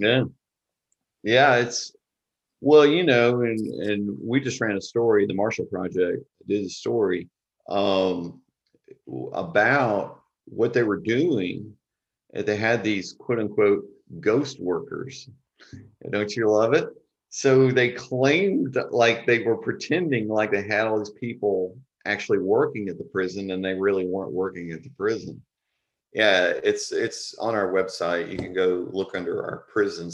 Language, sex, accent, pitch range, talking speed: English, male, American, 95-140 Hz, 150 wpm